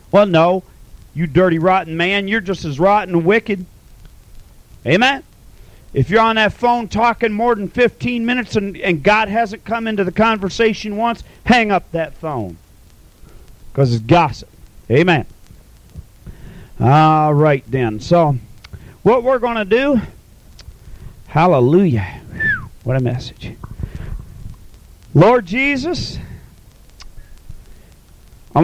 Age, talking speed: 40-59, 115 wpm